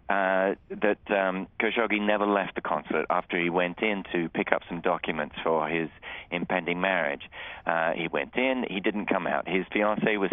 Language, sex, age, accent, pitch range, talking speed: English, male, 40-59, Australian, 90-100 Hz, 185 wpm